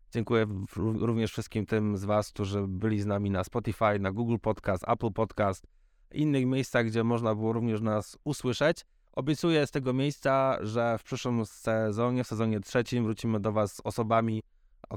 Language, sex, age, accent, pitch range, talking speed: Polish, male, 20-39, native, 105-125 Hz, 170 wpm